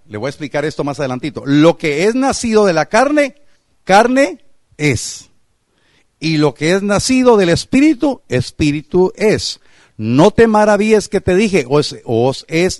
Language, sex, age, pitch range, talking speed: Spanish, male, 50-69, 140-185 Hz, 160 wpm